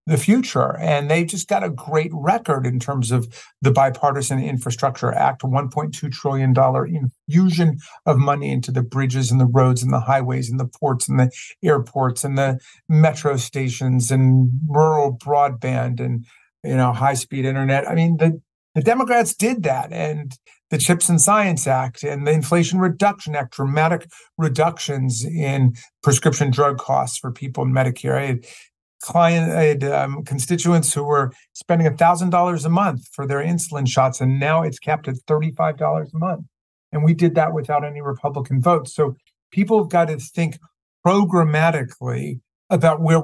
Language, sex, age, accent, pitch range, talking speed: English, male, 50-69, American, 130-165 Hz, 170 wpm